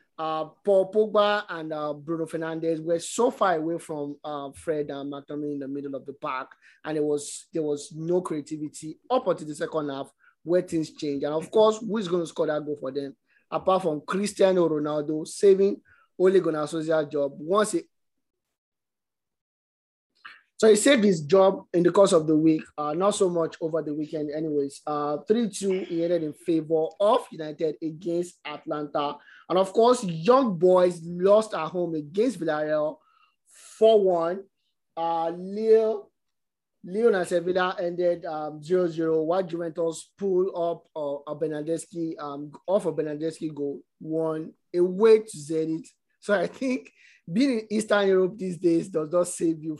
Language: English